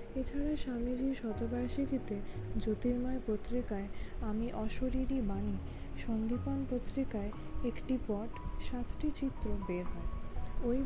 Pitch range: 200-235 Hz